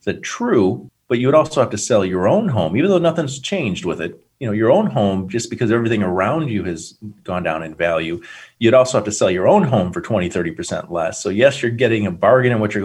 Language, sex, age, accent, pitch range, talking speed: English, male, 40-59, American, 100-125 Hz, 250 wpm